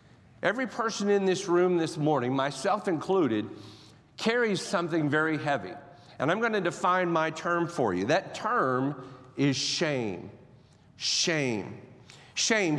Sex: male